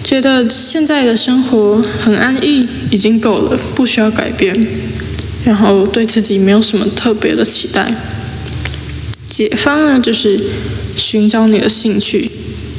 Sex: female